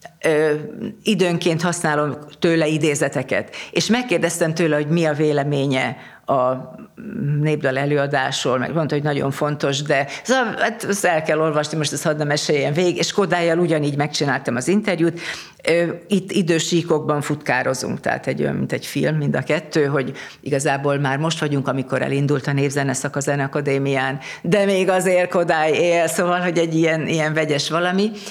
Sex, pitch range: female, 145-180 Hz